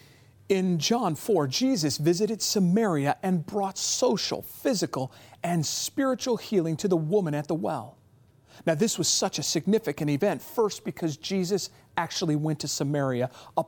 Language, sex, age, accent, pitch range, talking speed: English, male, 40-59, American, 140-180 Hz, 150 wpm